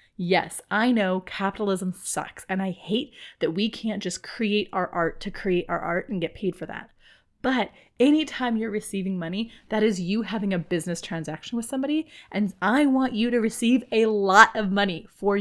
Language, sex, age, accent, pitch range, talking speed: English, female, 30-49, American, 195-250 Hz, 190 wpm